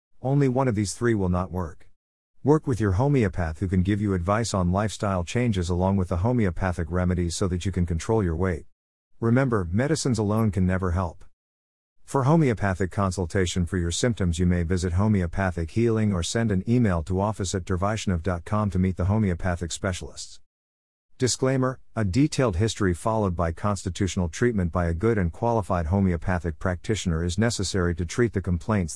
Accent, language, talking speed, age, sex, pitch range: American, English, 170 wpm, 50-69, male, 90-110 Hz